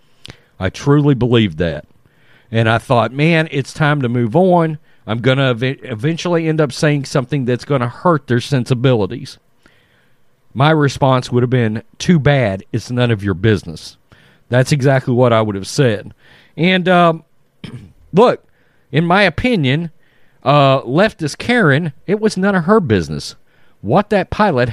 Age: 40-59